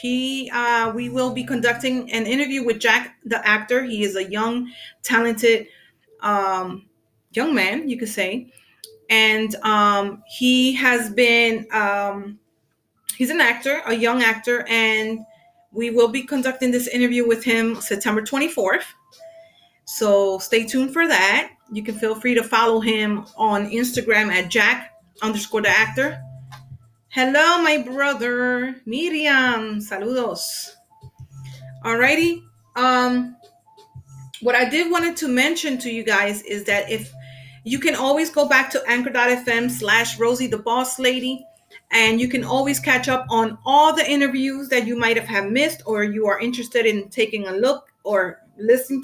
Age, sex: 30-49, female